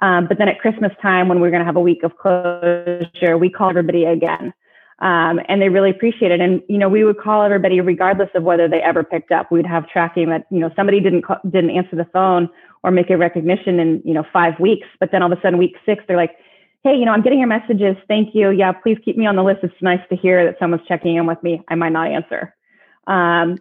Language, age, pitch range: English, 20-39, 175-200 Hz